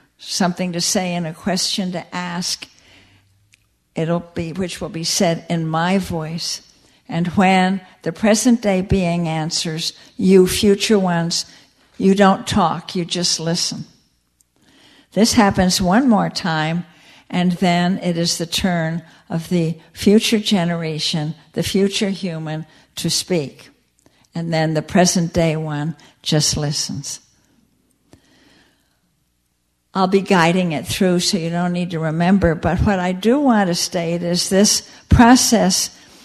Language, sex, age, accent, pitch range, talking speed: English, female, 60-79, American, 160-195 Hz, 135 wpm